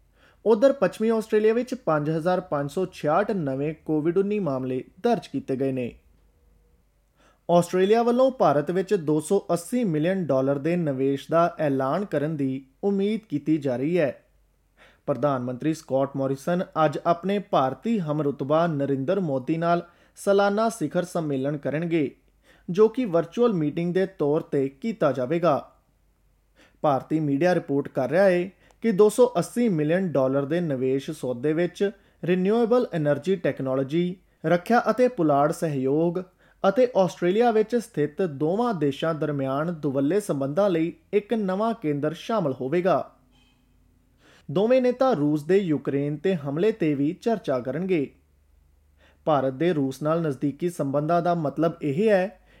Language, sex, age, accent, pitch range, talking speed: English, male, 20-39, Indian, 140-195 Hz, 90 wpm